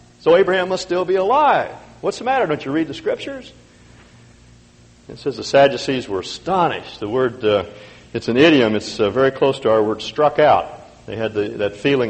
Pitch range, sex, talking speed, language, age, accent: 95-155 Hz, male, 195 wpm, English, 50-69, American